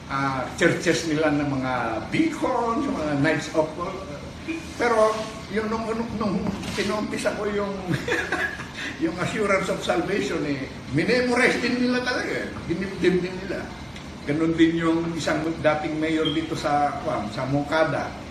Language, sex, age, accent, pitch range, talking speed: Filipino, male, 50-69, native, 145-205 Hz, 140 wpm